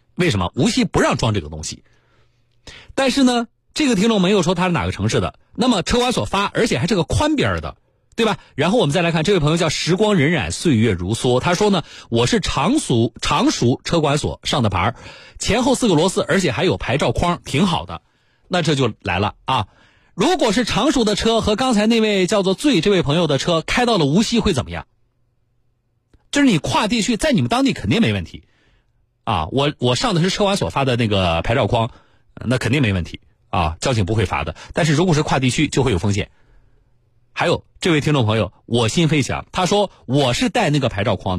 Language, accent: Chinese, native